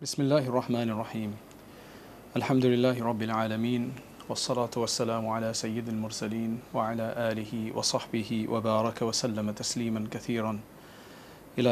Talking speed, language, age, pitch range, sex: 110 wpm, English, 40-59, 115-130 Hz, male